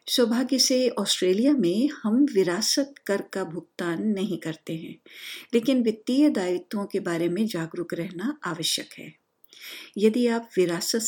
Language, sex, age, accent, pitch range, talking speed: Hindi, female, 50-69, native, 175-240 Hz, 135 wpm